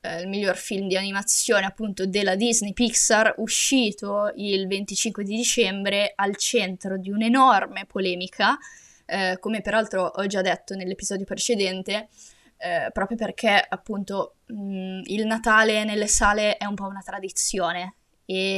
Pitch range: 185-220 Hz